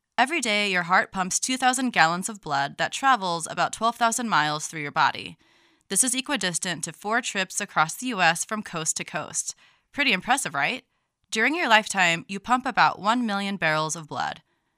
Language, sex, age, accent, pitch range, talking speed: English, female, 20-39, American, 170-240 Hz, 180 wpm